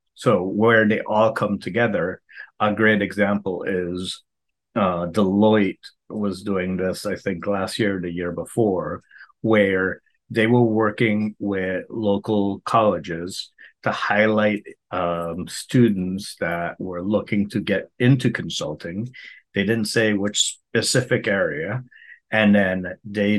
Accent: American